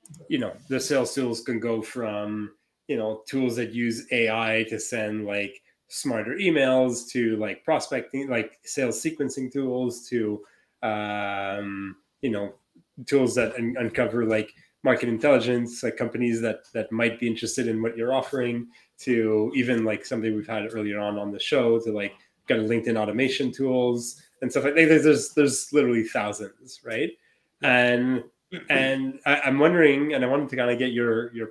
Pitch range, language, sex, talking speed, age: 110-135 Hz, English, male, 170 wpm, 20-39